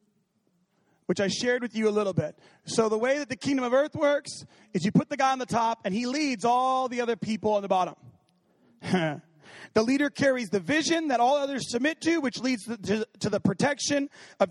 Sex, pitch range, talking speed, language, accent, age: male, 210-280 Hz, 220 wpm, English, American, 30-49